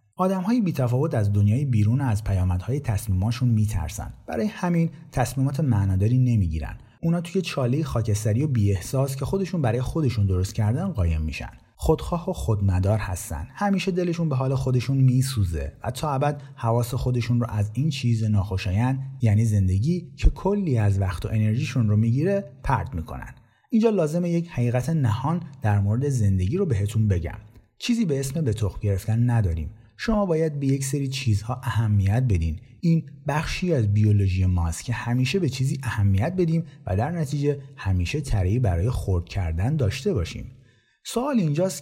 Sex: male